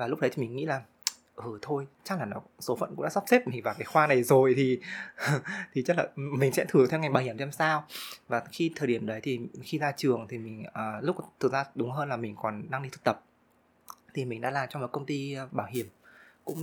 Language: Vietnamese